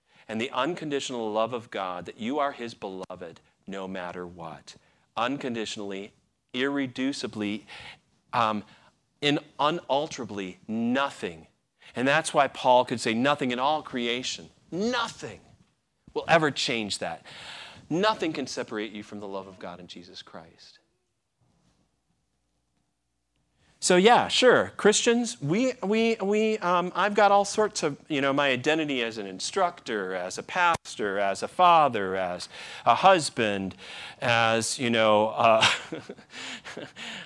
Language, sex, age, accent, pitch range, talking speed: English, male, 40-59, American, 105-160 Hz, 125 wpm